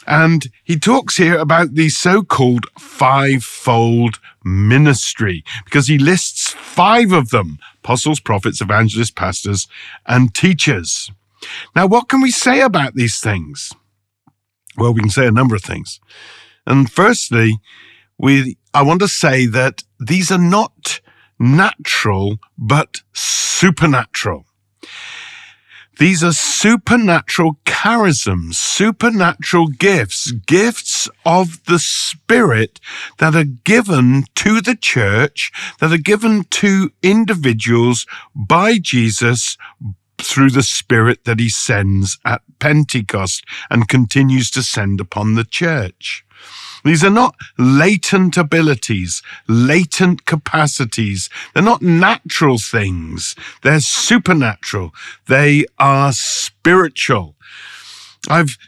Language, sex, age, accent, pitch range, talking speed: English, male, 50-69, British, 115-175 Hz, 110 wpm